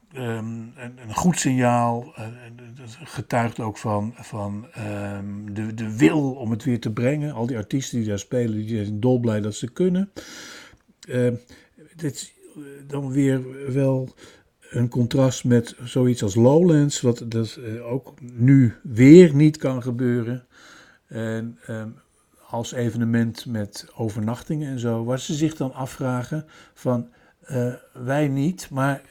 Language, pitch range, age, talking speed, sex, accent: Dutch, 115-145 Hz, 60-79, 140 wpm, male, Dutch